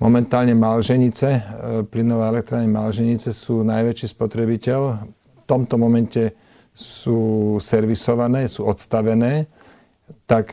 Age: 40-59